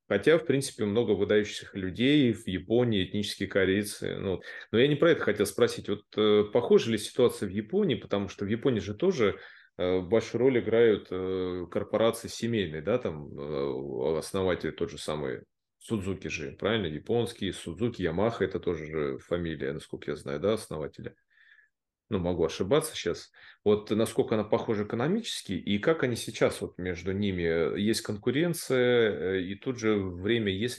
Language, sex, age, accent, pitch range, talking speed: Russian, male, 30-49, native, 95-120 Hz, 160 wpm